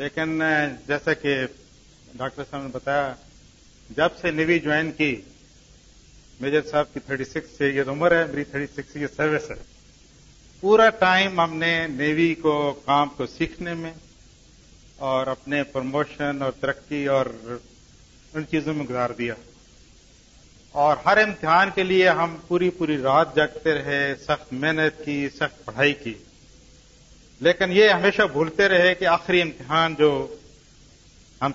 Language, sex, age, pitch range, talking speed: Urdu, male, 50-69, 135-160 Hz, 140 wpm